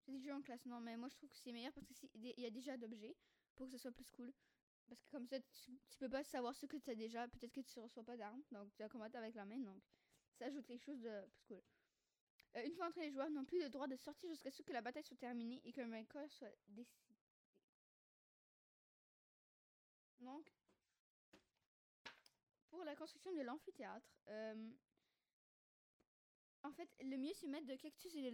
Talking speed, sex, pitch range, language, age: 225 wpm, female, 240-280 Hz, French, 20-39